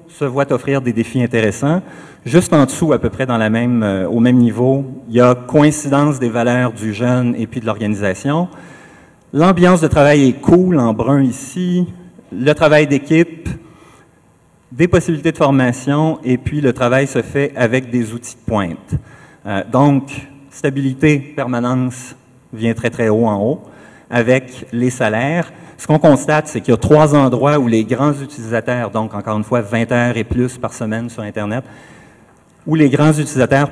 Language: French